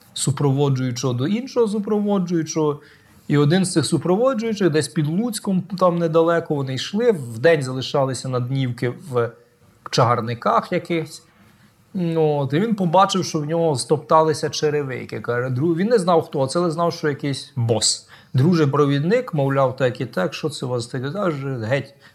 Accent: native